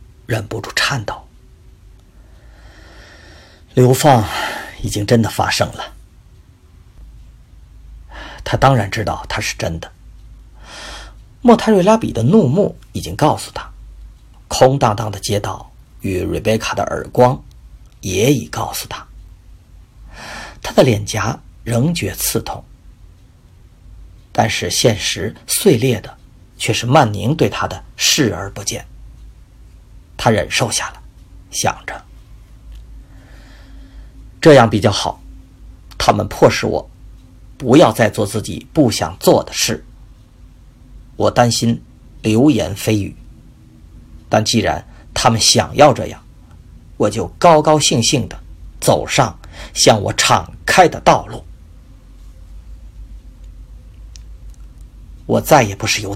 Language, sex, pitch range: Chinese, male, 85-115 Hz